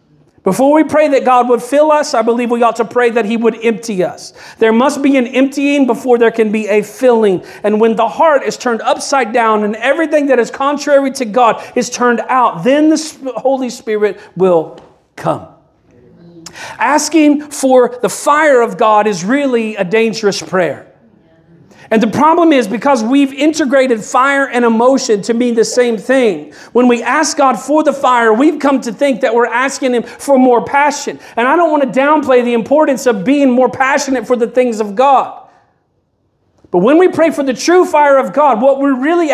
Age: 40-59